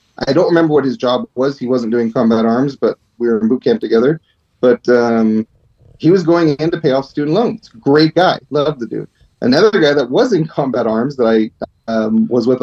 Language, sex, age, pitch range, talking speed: English, male, 30-49, 120-150 Hz, 225 wpm